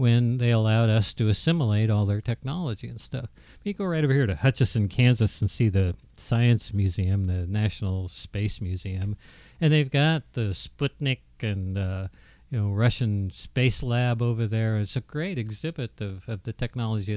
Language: English